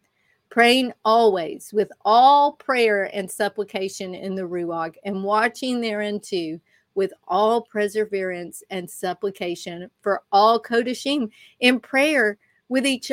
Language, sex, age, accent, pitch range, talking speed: English, female, 50-69, American, 185-230 Hz, 120 wpm